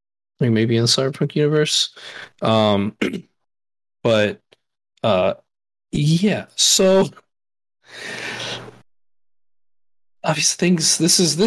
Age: 20-39